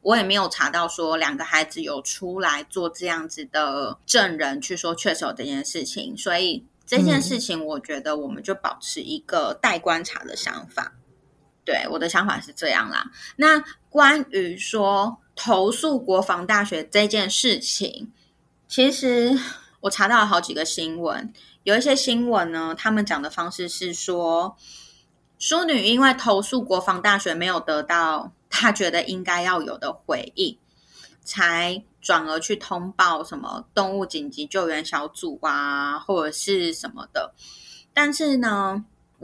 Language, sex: Chinese, female